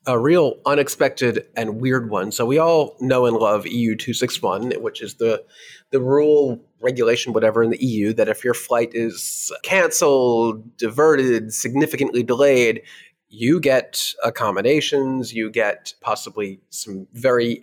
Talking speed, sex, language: 140 wpm, male, English